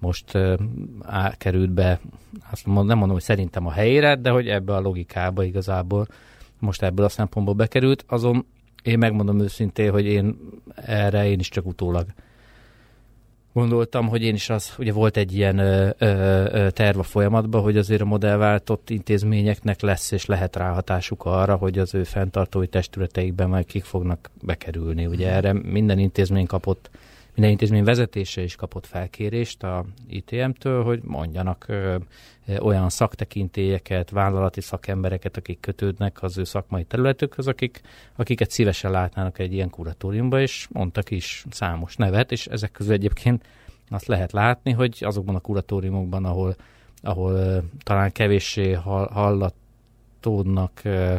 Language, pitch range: Hungarian, 95-115 Hz